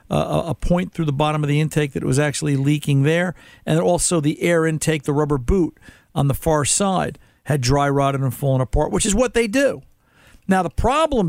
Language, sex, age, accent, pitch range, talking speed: English, male, 50-69, American, 140-170 Hz, 220 wpm